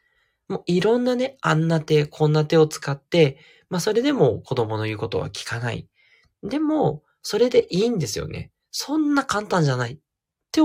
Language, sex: Japanese, male